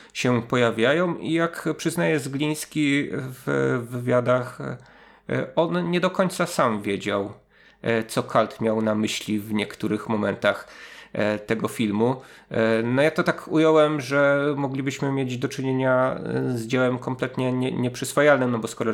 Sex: male